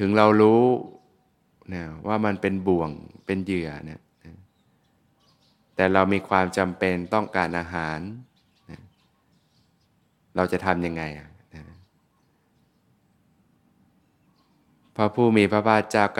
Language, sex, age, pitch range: Thai, male, 20-39, 90-110 Hz